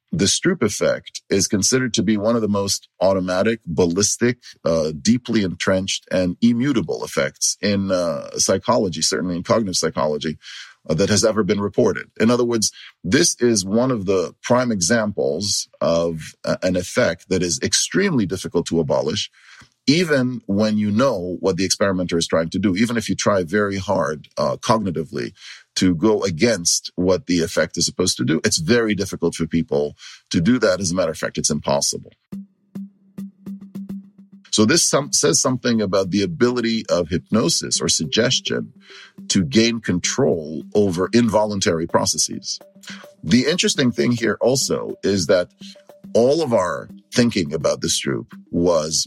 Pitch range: 95-125 Hz